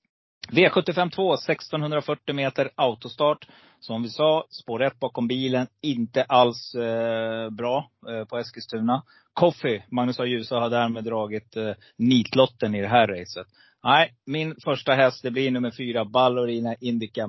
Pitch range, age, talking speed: 110-130 Hz, 30-49, 140 wpm